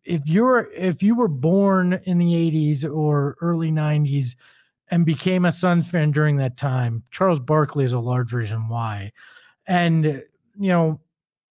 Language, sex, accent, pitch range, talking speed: English, male, American, 130-160 Hz, 155 wpm